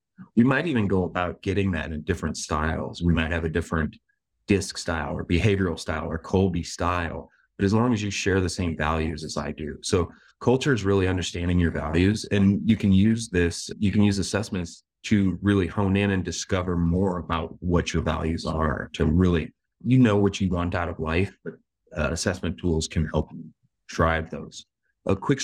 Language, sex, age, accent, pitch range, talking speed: English, male, 30-49, American, 85-100 Hz, 195 wpm